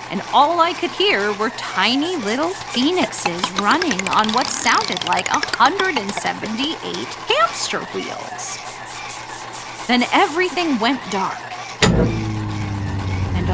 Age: 30-49